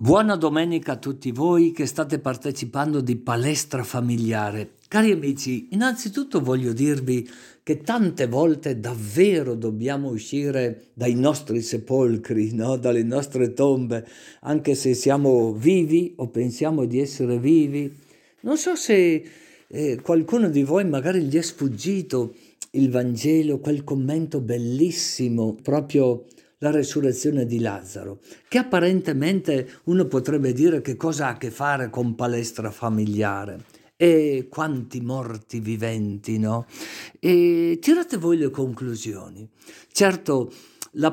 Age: 50-69